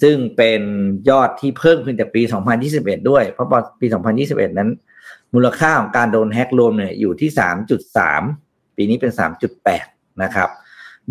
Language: Thai